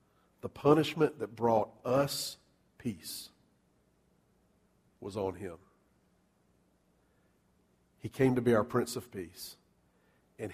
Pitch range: 125-165 Hz